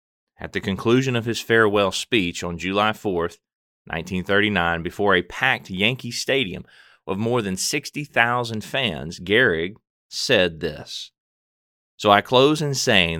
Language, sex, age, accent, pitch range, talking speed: English, male, 30-49, American, 90-115 Hz, 130 wpm